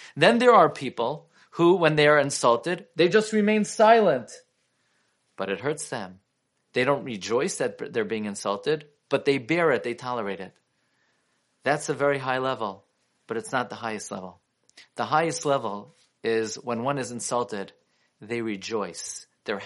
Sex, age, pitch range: male, 40-59, 115-155 Hz